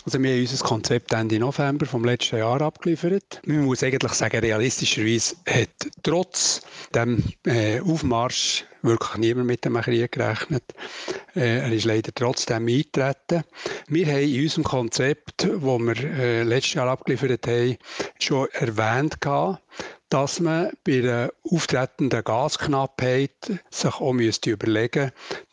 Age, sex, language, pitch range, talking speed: 60-79, male, German, 115-150 Hz, 135 wpm